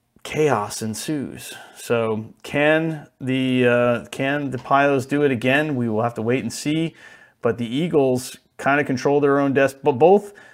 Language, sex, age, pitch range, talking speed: English, male, 30-49, 120-145 Hz, 170 wpm